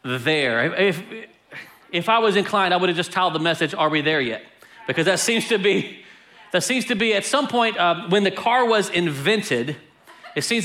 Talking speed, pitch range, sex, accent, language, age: 210 wpm, 175-210 Hz, male, American, English, 40-59